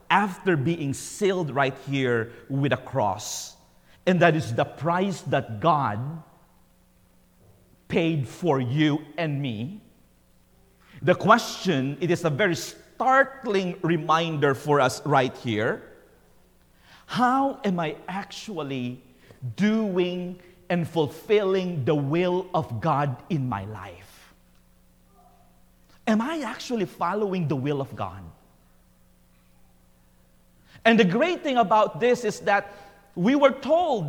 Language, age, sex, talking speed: English, 50-69, male, 115 wpm